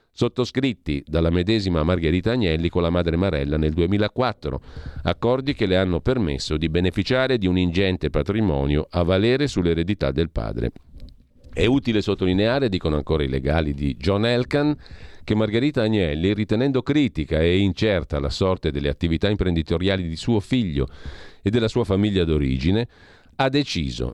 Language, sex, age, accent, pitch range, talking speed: Italian, male, 40-59, native, 80-115 Hz, 145 wpm